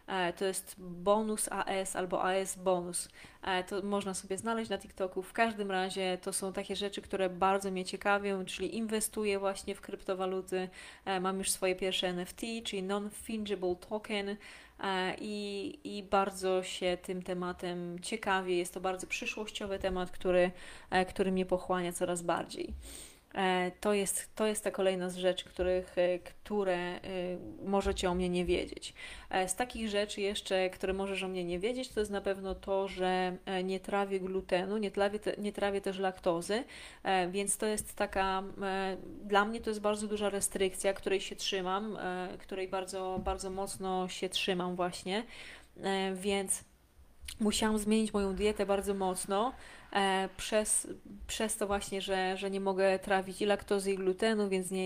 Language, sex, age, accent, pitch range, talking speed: Polish, female, 20-39, native, 185-200 Hz, 150 wpm